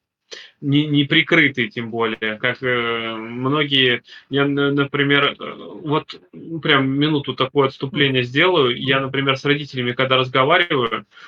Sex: male